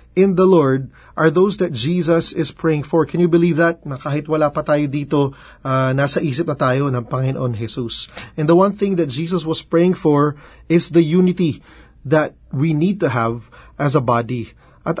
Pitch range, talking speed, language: 125-165 Hz, 195 wpm, English